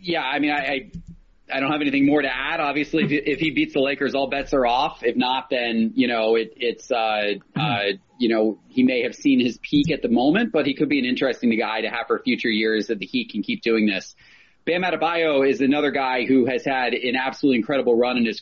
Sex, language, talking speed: male, English, 250 wpm